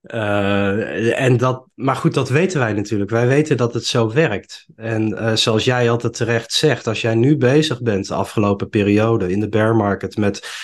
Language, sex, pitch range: Dutch, male, 110-130 Hz